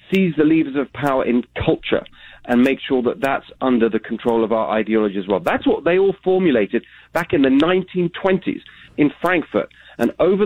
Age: 40-59